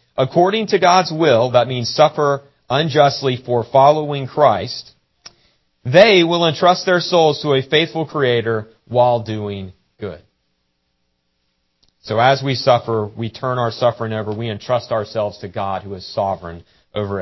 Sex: male